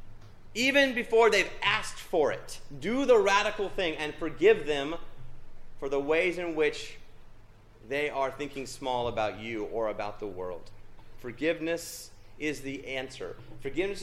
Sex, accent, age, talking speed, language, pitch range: male, American, 30-49, 140 wpm, English, 115-170 Hz